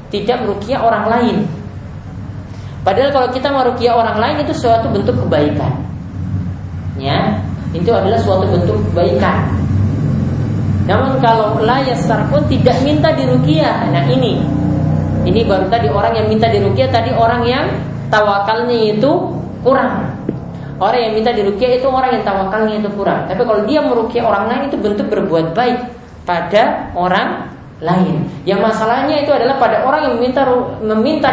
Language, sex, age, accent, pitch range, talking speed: Indonesian, female, 20-39, native, 145-230 Hz, 140 wpm